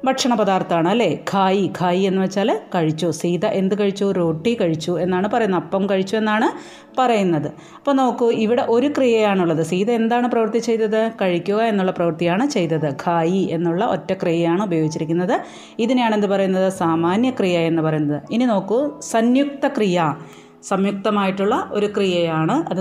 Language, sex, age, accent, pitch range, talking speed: Malayalam, female, 30-49, native, 175-215 Hz, 135 wpm